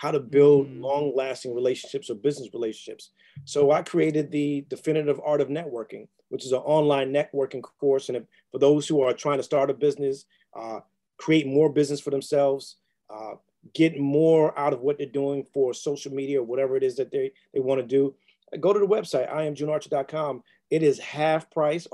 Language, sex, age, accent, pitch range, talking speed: English, male, 40-59, American, 135-165 Hz, 190 wpm